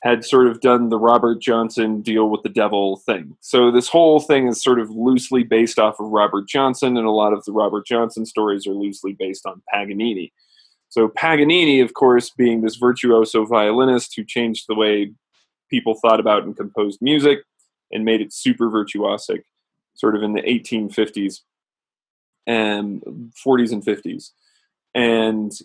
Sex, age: male, 20-39